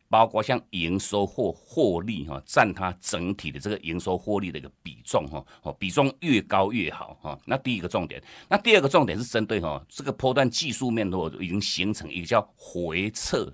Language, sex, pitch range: Chinese, male, 90-120 Hz